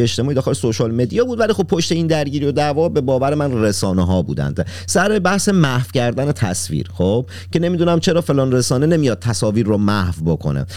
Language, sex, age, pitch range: Persian, male, 40-59, 95-145 Hz